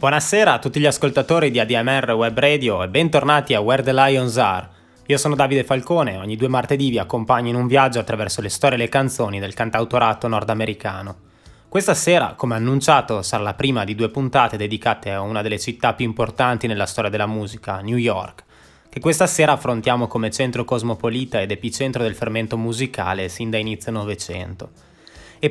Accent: native